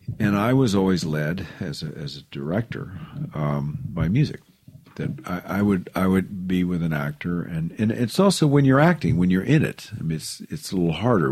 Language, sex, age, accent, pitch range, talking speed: English, male, 50-69, American, 85-120 Hz, 215 wpm